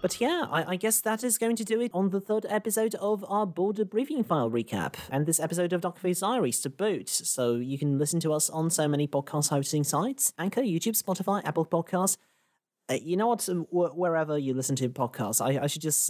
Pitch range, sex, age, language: 130-190 Hz, male, 30-49, English